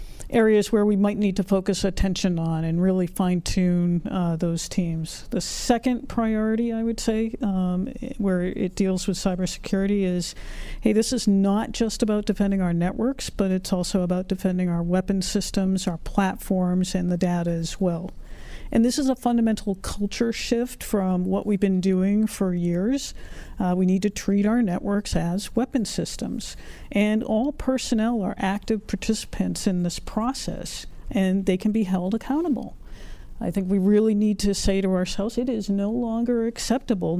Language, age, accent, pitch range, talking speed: English, 50-69, American, 185-225 Hz, 170 wpm